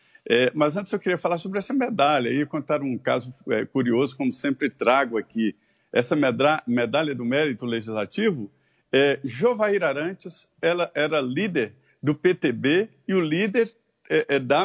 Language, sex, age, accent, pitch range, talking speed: Portuguese, male, 50-69, Brazilian, 135-195 Hz, 160 wpm